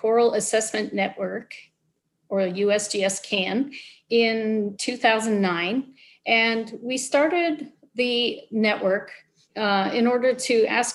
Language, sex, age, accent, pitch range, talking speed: English, female, 40-59, American, 180-225 Hz, 100 wpm